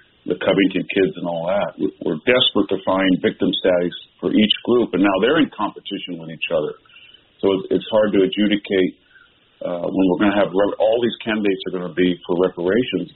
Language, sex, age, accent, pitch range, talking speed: English, male, 50-69, American, 90-95 Hz, 195 wpm